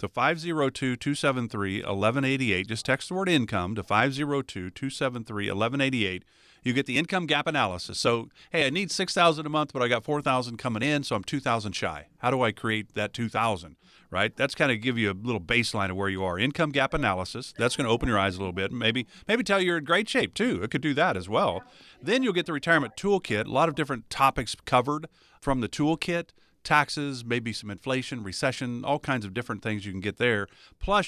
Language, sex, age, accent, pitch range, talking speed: English, male, 40-59, American, 105-145 Hz, 210 wpm